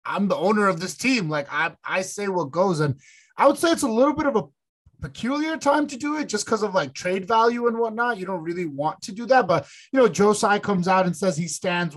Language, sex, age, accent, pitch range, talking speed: English, male, 30-49, American, 165-220 Hz, 265 wpm